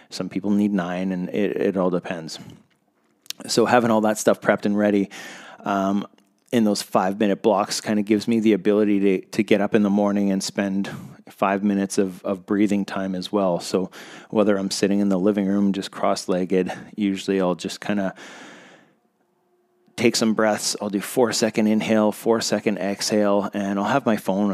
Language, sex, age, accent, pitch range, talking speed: English, male, 30-49, American, 95-105 Hz, 190 wpm